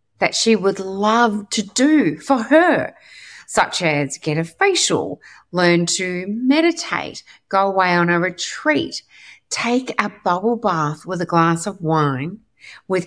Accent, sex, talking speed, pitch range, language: Australian, female, 140 wpm, 155-215 Hz, English